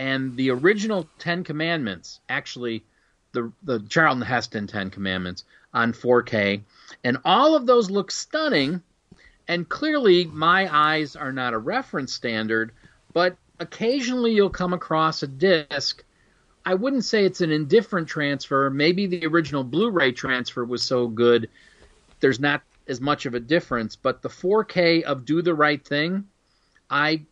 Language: English